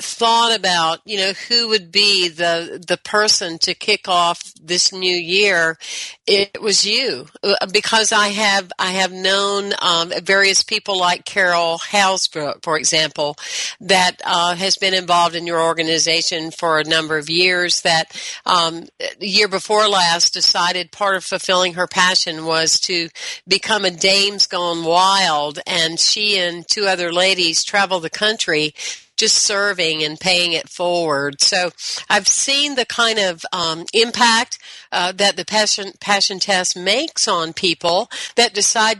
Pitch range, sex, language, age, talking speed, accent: 170-210 Hz, female, English, 50-69, 155 wpm, American